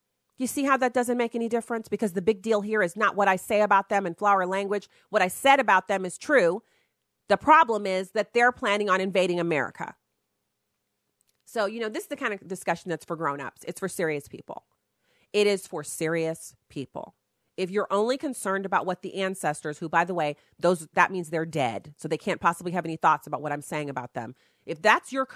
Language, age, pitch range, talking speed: English, 40-59, 160-210 Hz, 220 wpm